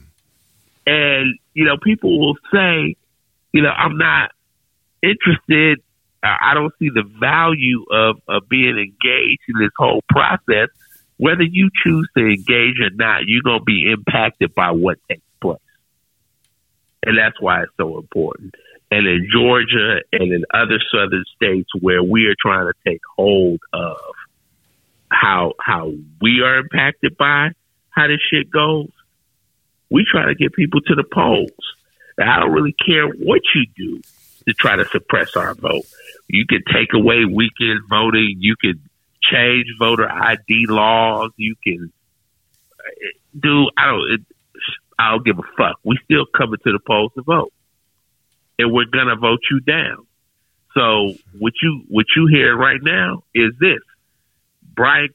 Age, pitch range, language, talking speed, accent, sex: 50-69, 110-150 Hz, English, 155 wpm, American, male